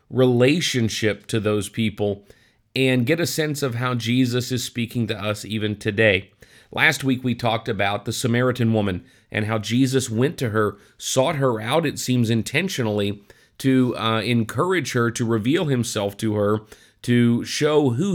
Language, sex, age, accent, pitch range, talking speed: English, male, 40-59, American, 110-135 Hz, 160 wpm